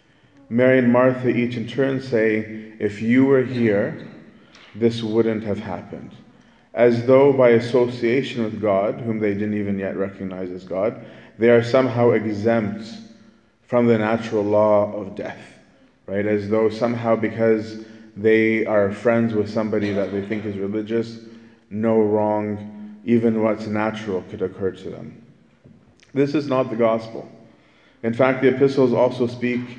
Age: 30-49